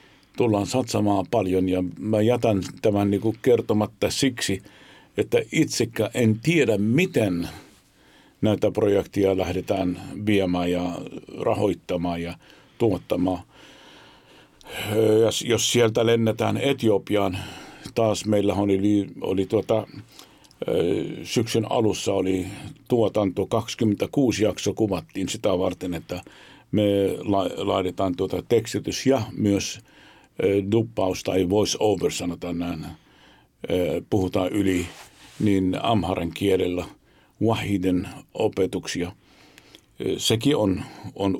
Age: 50-69